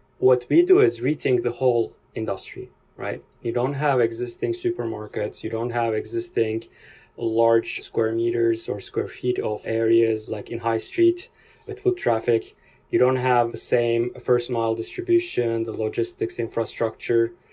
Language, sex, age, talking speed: English, male, 20-39, 150 wpm